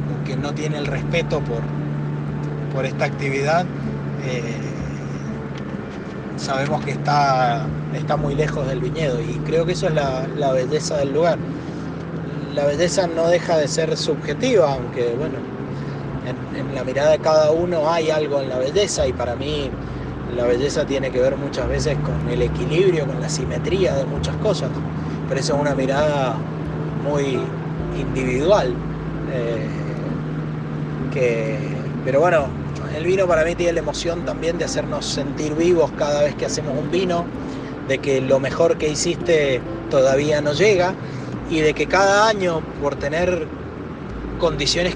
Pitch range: 135-165 Hz